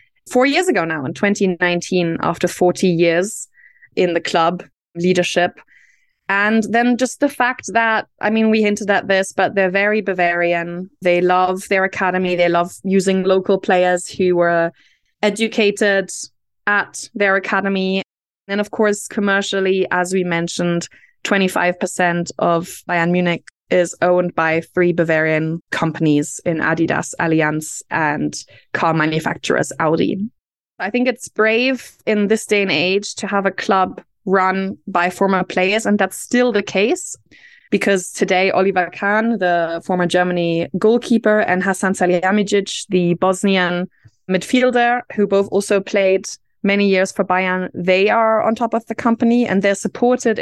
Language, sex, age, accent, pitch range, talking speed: English, female, 20-39, Irish, 180-210 Hz, 145 wpm